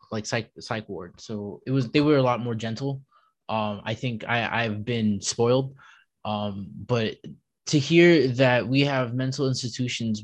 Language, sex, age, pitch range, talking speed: English, male, 20-39, 115-135 Hz, 170 wpm